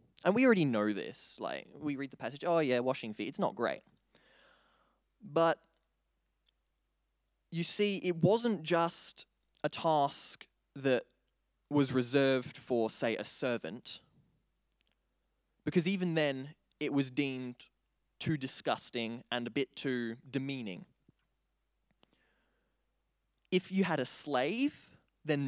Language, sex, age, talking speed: English, male, 20-39, 120 wpm